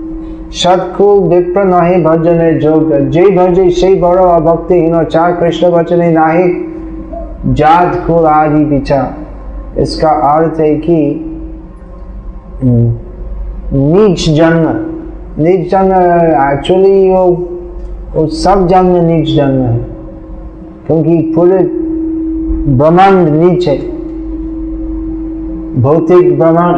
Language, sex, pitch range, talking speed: Hindi, male, 155-185 Hz, 70 wpm